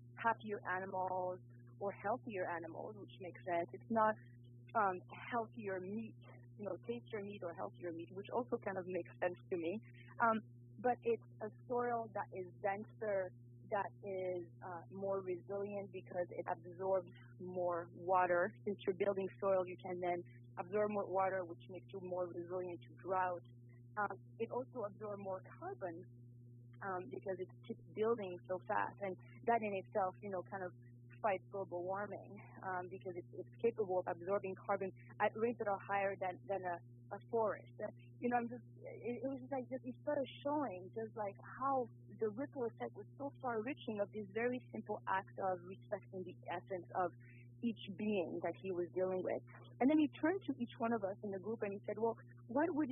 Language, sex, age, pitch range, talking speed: English, female, 30-49, 125-215 Hz, 185 wpm